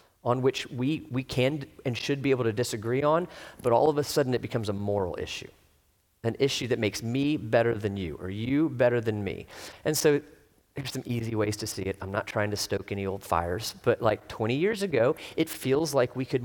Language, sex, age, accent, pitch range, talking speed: English, male, 40-59, American, 120-165 Hz, 225 wpm